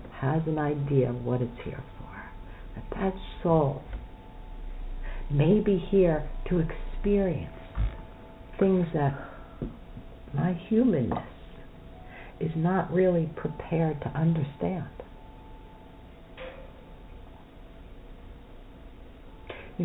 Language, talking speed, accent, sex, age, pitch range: English, 80 wpm, American, female, 60-79, 110-175 Hz